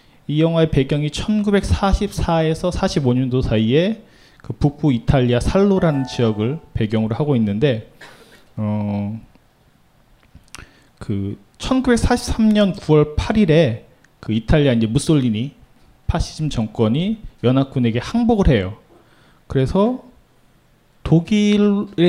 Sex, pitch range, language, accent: male, 120-175 Hz, Korean, native